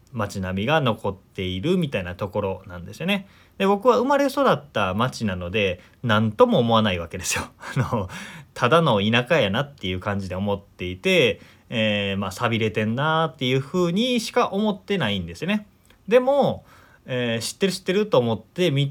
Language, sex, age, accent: Japanese, male, 30-49, native